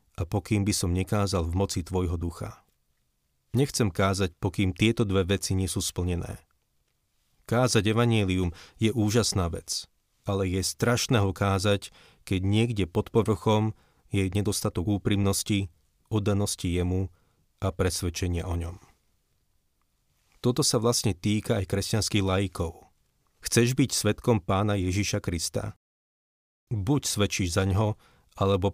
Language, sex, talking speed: Slovak, male, 125 wpm